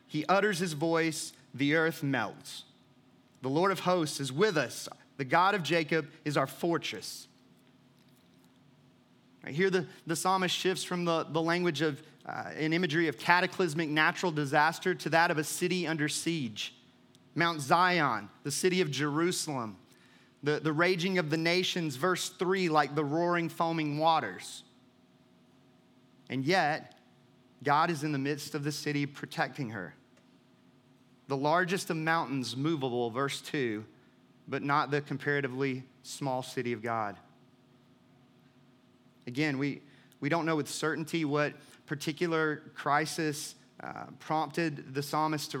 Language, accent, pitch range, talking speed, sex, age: English, American, 135-165 Hz, 140 wpm, male, 30-49